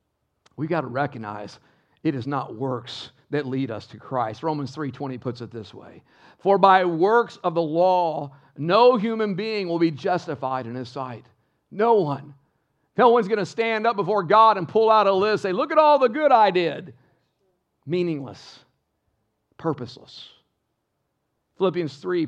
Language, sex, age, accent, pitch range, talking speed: English, male, 50-69, American, 145-205 Hz, 165 wpm